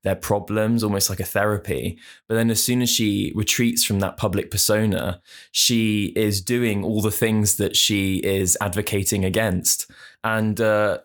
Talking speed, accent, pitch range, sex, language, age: 165 wpm, British, 100-110 Hz, male, English, 20-39